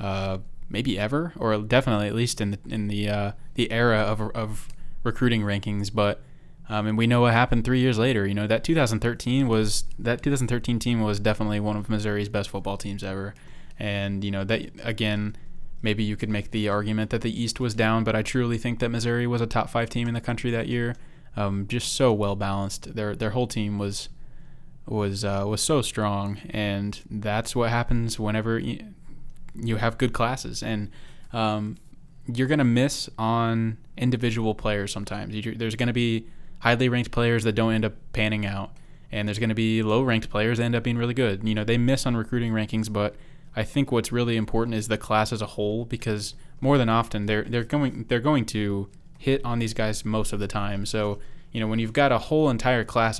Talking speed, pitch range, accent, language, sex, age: 205 wpm, 105-120 Hz, American, English, male, 20-39